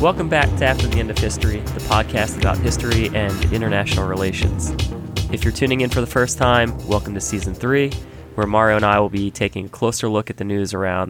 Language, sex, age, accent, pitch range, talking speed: English, male, 20-39, American, 95-115 Hz, 220 wpm